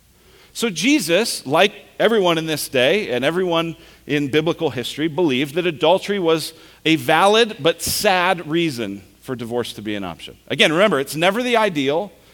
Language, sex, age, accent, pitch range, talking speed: English, male, 40-59, American, 100-165 Hz, 160 wpm